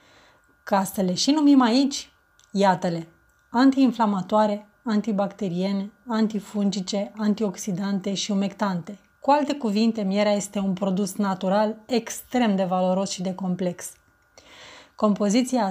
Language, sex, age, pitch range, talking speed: Romanian, female, 20-39, 195-240 Hz, 100 wpm